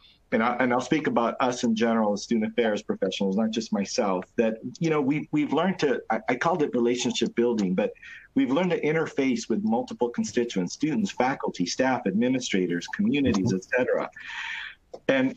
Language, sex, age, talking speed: English, male, 50-69, 165 wpm